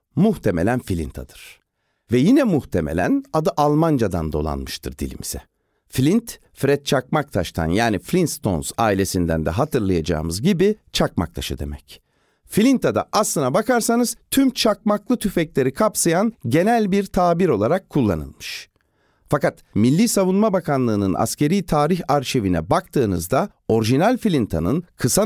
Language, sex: Turkish, male